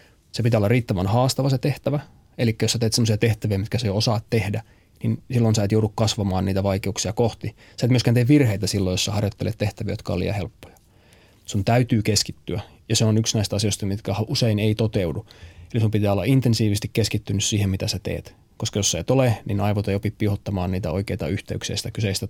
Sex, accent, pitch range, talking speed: male, native, 100-115 Hz, 210 wpm